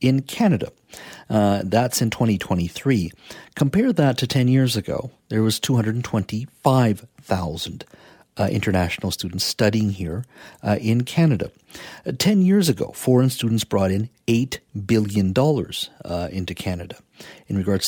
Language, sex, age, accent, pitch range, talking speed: English, male, 50-69, American, 95-125 Hz, 130 wpm